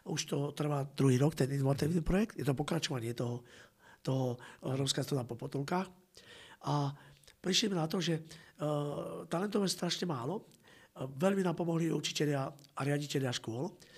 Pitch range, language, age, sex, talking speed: 130-165 Hz, Slovak, 50-69, male, 150 wpm